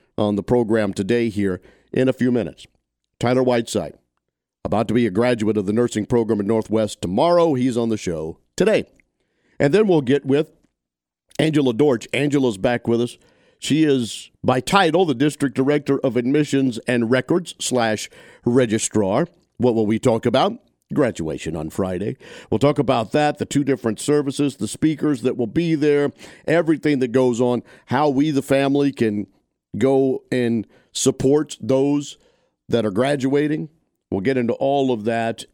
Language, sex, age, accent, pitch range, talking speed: English, male, 50-69, American, 110-140 Hz, 160 wpm